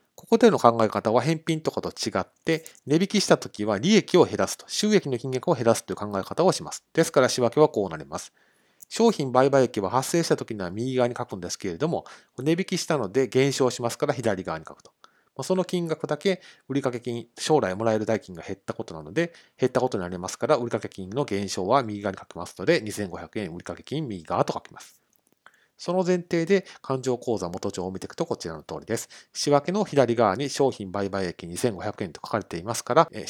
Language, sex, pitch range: Japanese, male, 105-150 Hz